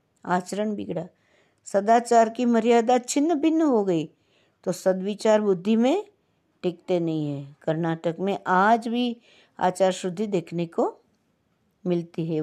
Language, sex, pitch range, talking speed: Hindi, female, 175-225 Hz, 125 wpm